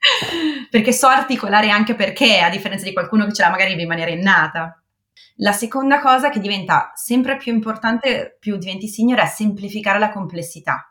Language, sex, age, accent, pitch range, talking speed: Italian, female, 30-49, native, 170-215 Hz, 170 wpm